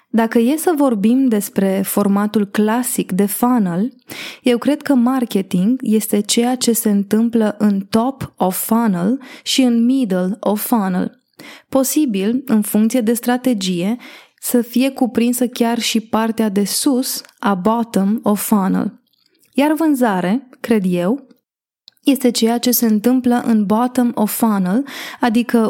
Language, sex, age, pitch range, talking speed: Romanian, female, 20-39, 215-255 Hz, 135 wpm